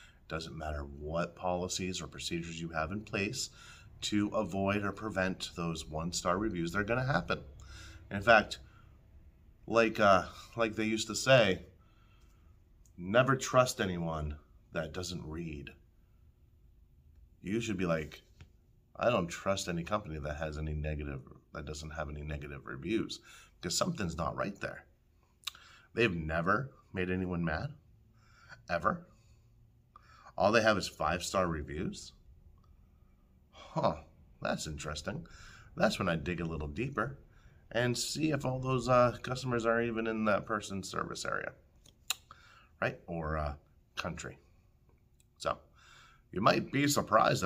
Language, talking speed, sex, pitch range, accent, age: English, 135 wpm, male, 80-110 Hz, American, 30-49